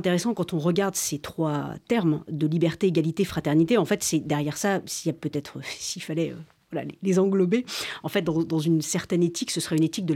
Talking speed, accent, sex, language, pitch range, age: 225 wpm, French, female, French, 160-200 Hz, 40-59